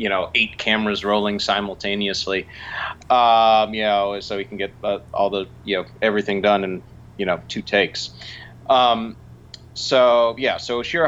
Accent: American